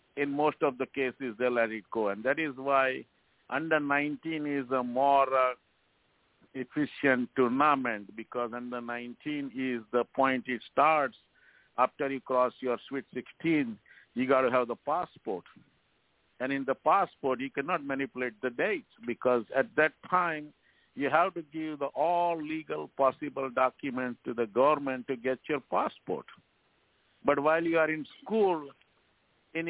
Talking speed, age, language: 150 wpm, 50-69, English